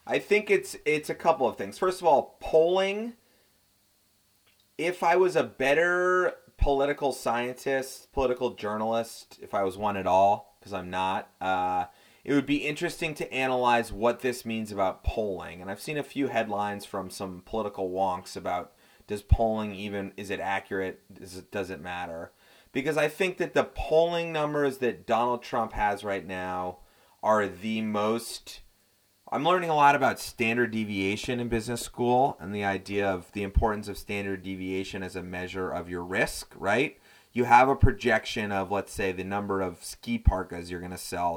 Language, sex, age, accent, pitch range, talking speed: English, male, 30-49, American, 95-125 Hz, 175 wpm